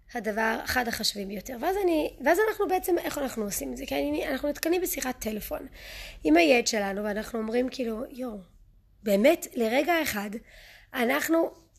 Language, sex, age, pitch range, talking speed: Hebrew, female, 20-39, 220-295 Hz, 160 wpm